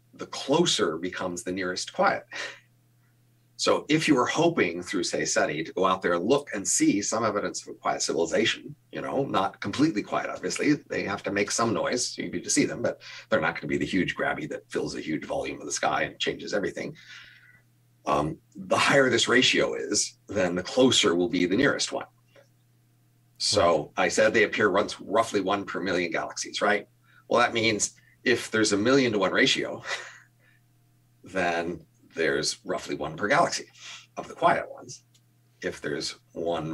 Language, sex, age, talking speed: English, male, 40-59, 185 wpm